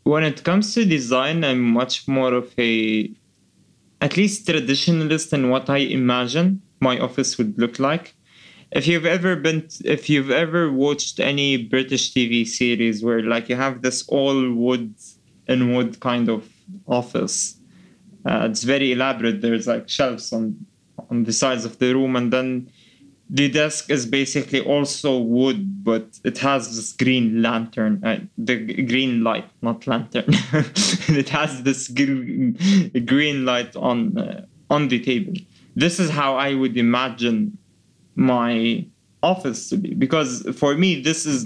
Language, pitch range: English, 120-155 Hz